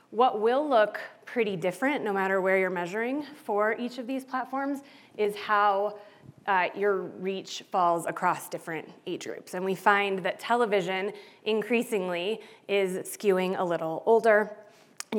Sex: female